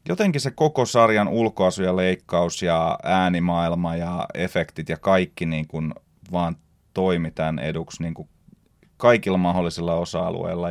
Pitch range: 85-110 Hz